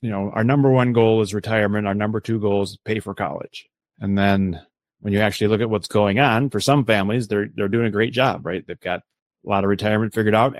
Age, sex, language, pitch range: 30-49, male, English, 100-115 Hz